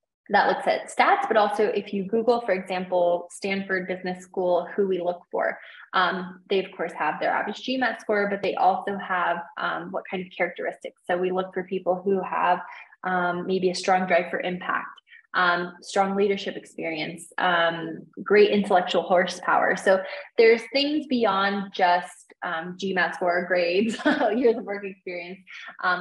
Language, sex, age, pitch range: English, female, 20-39, 180-210 Hz